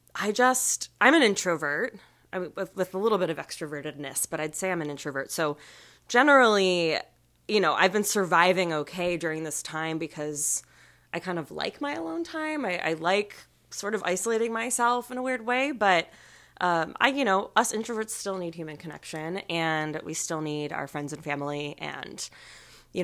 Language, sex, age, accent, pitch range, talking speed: English, female, 20-39, American, 155-210 Hz, 180 wpm